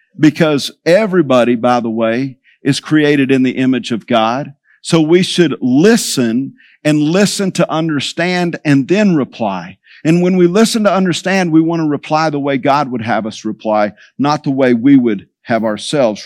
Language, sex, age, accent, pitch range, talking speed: English, male, 50-69, American, 130-165 Hz, 175 wpm